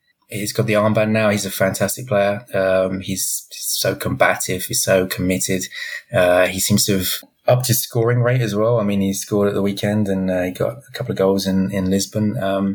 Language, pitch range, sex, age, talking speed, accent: English, 95-115 Hz, male, 20-39, 210 wpm, British